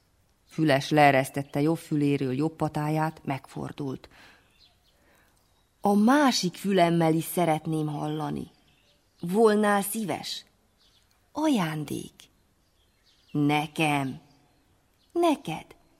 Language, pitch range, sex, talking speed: Hungarian, 145-220 Hz, female, 70 wpm